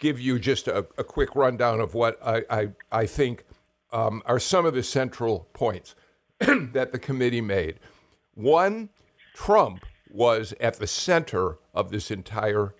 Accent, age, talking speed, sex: American, 60-79, 155 wpm, male